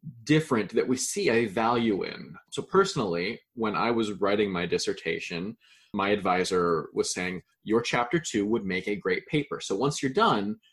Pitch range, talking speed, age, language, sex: 105-145 Hz, 175 wpm, 20-39, English, male